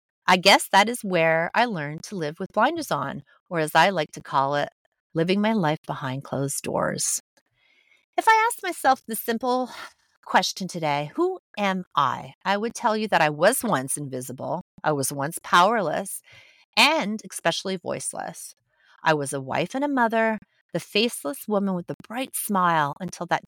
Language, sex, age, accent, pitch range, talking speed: English, female, 30-49, American, 155-215 Hz, 175 wpm